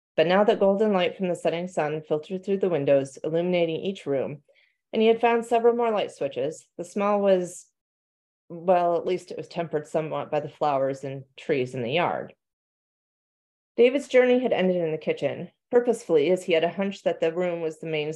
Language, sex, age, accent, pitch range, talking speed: English, female, 30-49, American, 155-225 Hz, 200 wpm